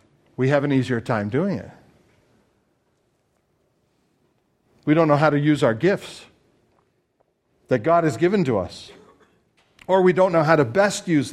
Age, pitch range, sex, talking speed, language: 50-69, 130-195 Hz, male, 155 wpm, English